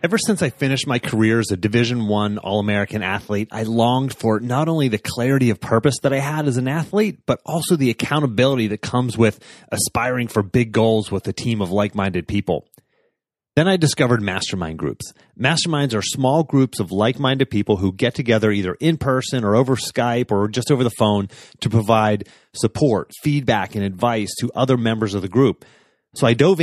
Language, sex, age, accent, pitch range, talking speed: English, male, 30-49, American, 105-130 Hz, 190 wpm